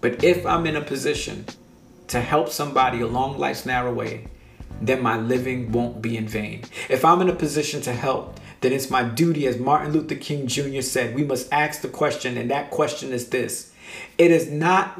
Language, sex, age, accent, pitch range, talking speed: English, male, 50-69, American, 120-155 Hz, 200 wpm